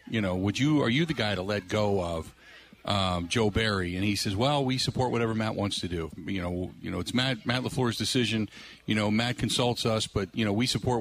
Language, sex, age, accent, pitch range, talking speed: English, male, 50-69, American, 105-135 Hz, 245 wpm